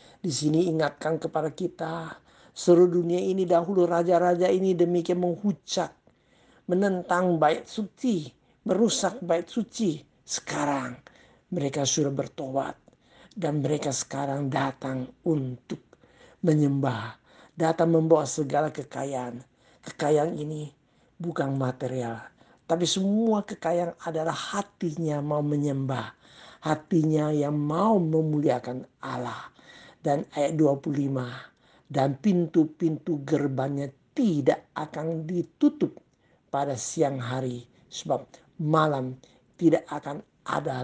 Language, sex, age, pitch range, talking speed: Indonesian, male, 50-69, 135-170 Hz, 95 wpm